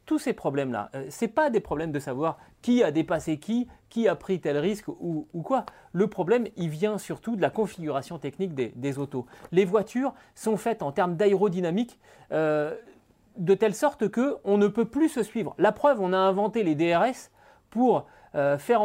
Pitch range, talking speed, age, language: 170-235 Hz, 195 wpm, 30-49, French